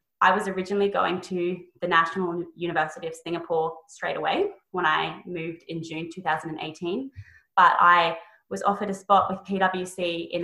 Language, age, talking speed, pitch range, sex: English, 20-39, 155 wpm, 170-200 Hz, female